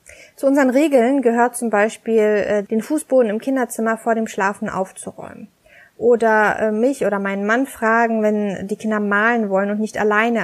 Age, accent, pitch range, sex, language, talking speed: 20-39, German, 205-240 Hz, female, German, 160 wpm